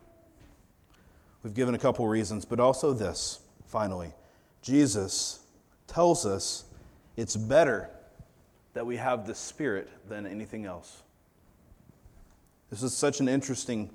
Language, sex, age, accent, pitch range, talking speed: English, male, 30-49, American, 100-140 Hz, 115 wpm